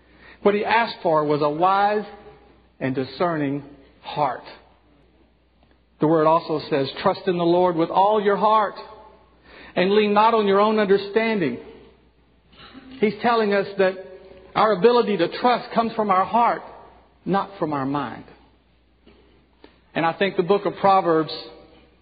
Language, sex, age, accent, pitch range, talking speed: English, male, 50-69, American, 140-200 Hz, 140 wpm